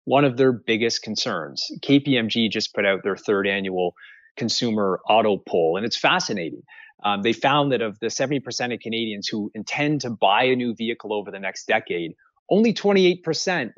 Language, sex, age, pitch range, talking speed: English, male, 30-49, 115-155 Hz, 175 wpm